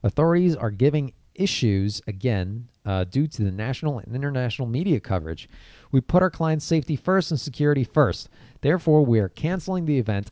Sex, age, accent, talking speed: male, 30-49, American, 170 wpm